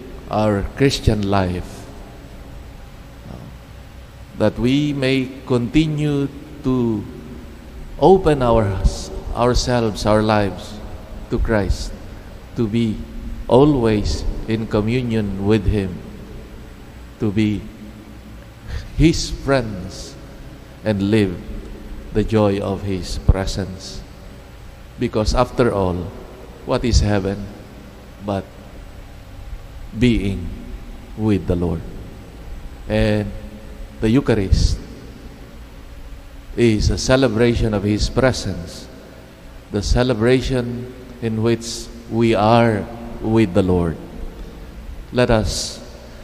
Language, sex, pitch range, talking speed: English, male, 95-115 Hz, 85 wpm